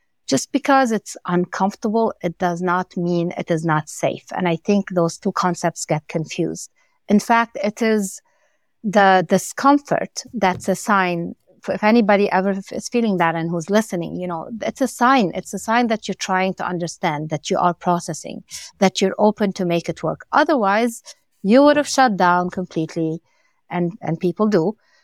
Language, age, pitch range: English, 60-79, 175-215 Hz